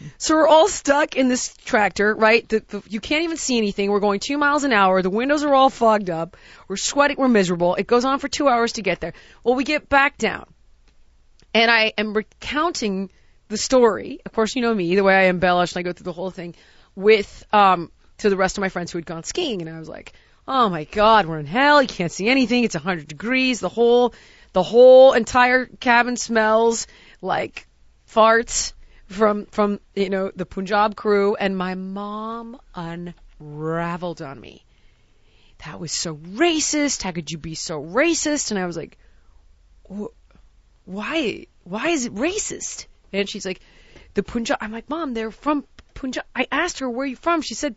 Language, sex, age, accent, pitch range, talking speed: English, female, 30-49, American, 185-260 Hz, 195 wpm